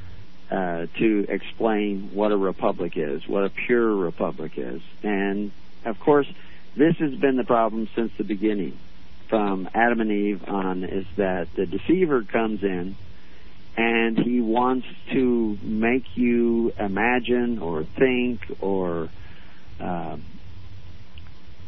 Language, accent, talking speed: English, American, 125 wpm